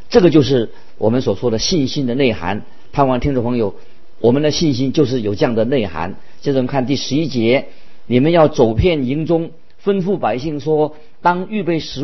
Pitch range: 125-175 Hz